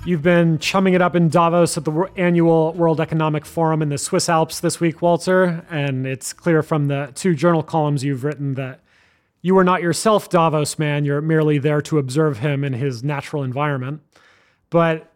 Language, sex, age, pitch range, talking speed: English, male, 30-49, 135-170 Hz, 190 wpm